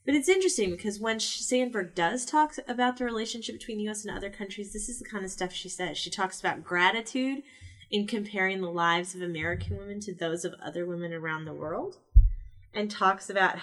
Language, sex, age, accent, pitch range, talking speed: English, female, 30-49, American, 180-255 Hz, 205 wpm